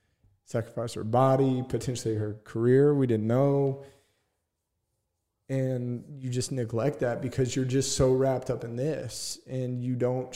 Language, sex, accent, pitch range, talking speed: English, male, American, 110-130 Hz, 145 wpm